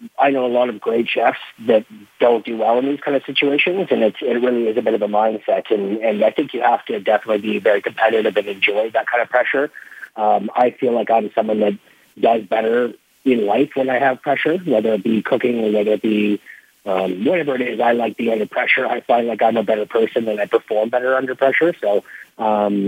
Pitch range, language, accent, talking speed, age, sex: 110-125 Hz, English, American, 235 wpm, 40-59, male